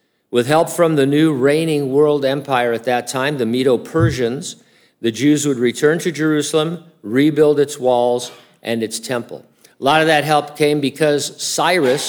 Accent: American